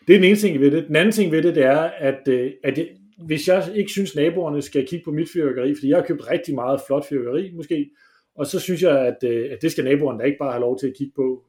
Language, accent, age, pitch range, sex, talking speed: English, Danish, 30-49, 130-170 Hz, male, 280 wpm